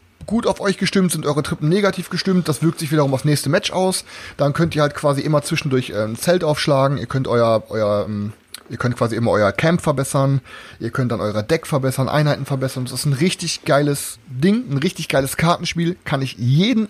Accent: German